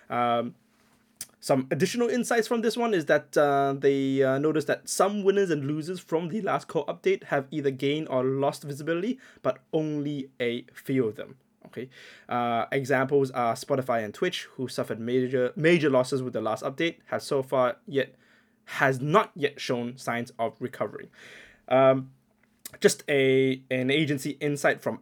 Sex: male